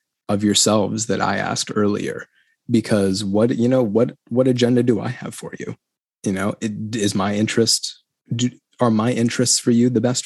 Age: 20-39